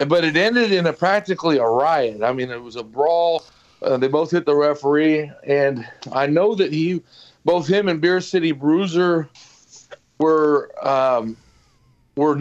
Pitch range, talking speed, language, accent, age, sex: 140-170 Hz, 165 wpm, English, American, 40-59, male